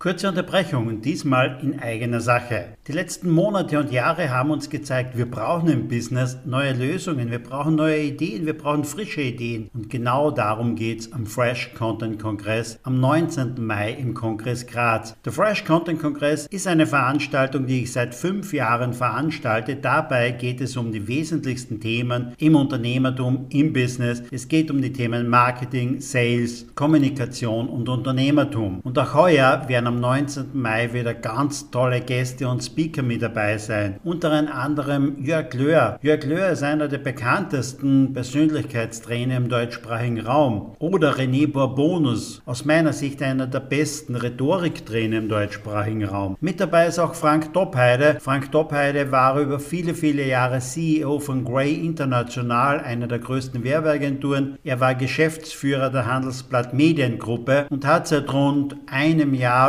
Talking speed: 155 wpm